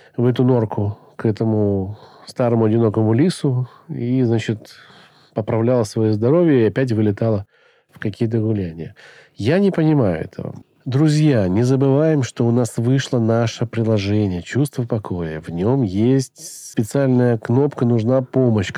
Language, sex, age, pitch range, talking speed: Russian, male, 40-59, 110-140 Hz, 130 wpm